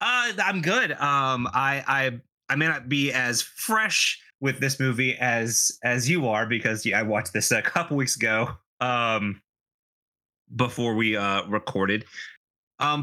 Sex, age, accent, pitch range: male, 30-49, American, 110-155 Hz